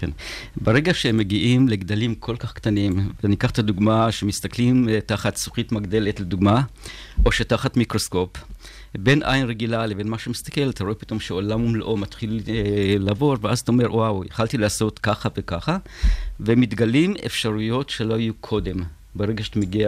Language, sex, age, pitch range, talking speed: Hebrew, male, 50-69, 105-125 Hz, 150 wpm